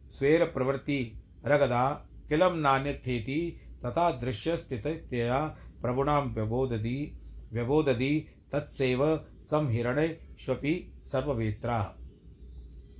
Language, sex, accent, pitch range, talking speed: Hindi, male, native, 105-150 Hz, 55 wpm